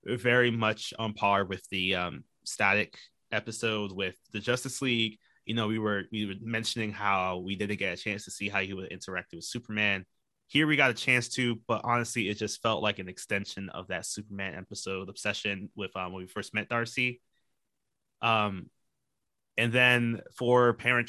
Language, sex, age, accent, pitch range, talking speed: English, male, 20-39, American, 100-120 Hz, 185 wpm